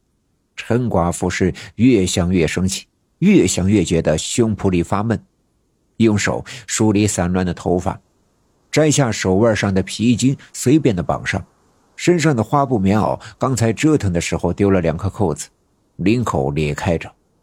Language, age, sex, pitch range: Chinese, 50-69, male, 85-130 Hz